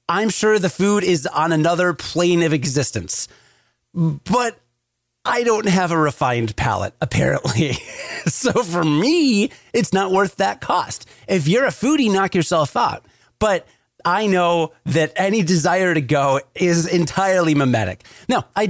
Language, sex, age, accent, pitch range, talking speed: English, male, 30-49, American, 125-190 Hz, 150 wpm